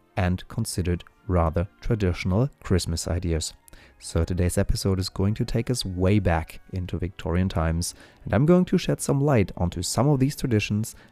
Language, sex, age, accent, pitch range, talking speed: German, male, 30-49, German, 85-110 Hz, 165 wpm